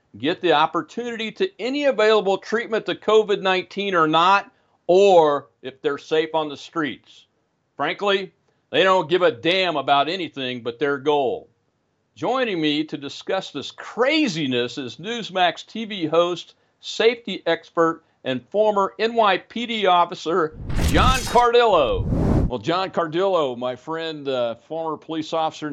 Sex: male